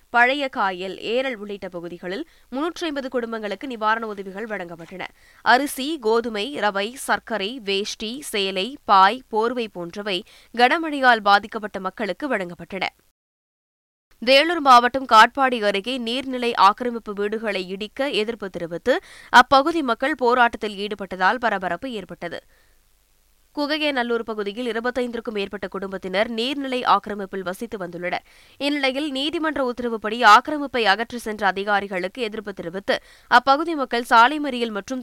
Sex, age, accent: female, 20-39, native